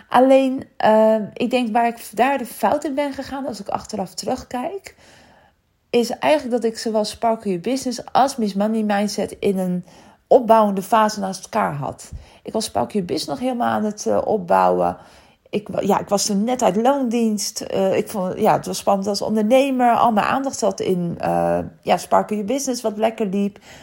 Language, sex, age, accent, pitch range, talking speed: Dutch, female, 40-59, Dutch, 200-250 Hz, 190 wpm